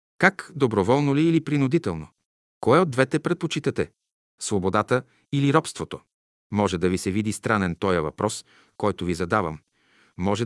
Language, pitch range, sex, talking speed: Bulgarian, 95-130 Hz, male, 140 wpm